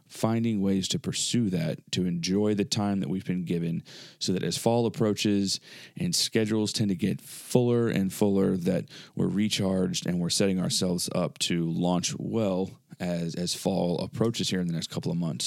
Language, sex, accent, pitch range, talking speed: English, male, American, 95-110 Hz, 185 wpm